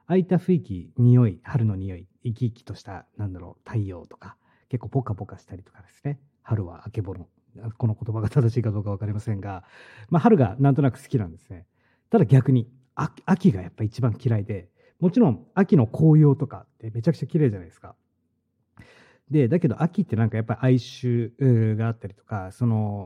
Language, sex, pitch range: Japanese, male, 105-140 Hz